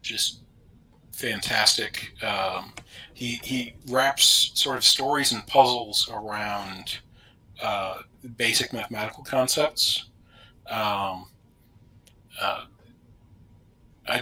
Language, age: English, 40-59